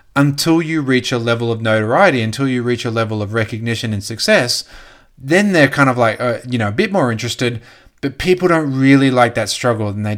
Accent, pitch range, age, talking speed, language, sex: Australian, 110-135 Hz, 30-49, 220 wpm, English, male